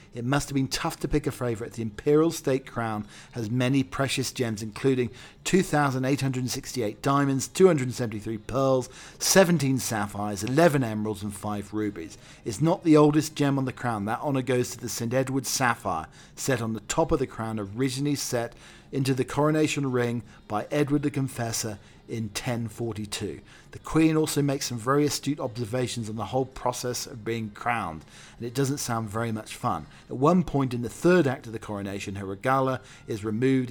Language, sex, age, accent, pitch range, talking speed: English, male, 40-59, British, 110-135 Hz, 180 wpm